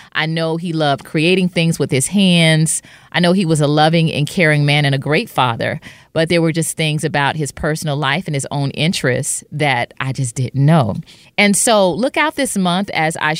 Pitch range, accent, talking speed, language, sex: 145-185 Hz, American, 215 wpm, English, female